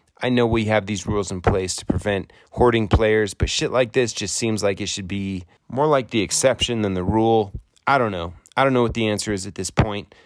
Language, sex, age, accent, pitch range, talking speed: English, male, 30-49, American, 95-120 Hz, 245 wpm